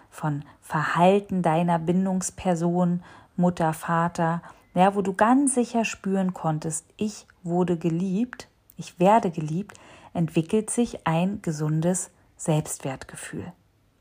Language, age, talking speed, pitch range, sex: German, 40-59, 100 wpm, 130-185 Hz, female